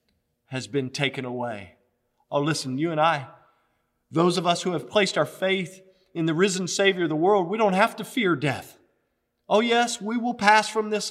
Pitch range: 155-215 Hz